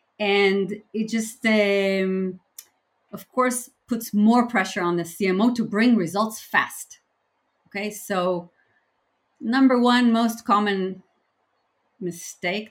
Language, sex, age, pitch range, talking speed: English, female, 30-49, 185-245 Hz, 110 wpm